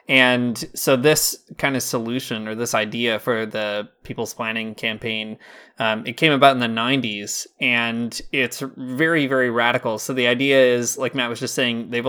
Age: 20-39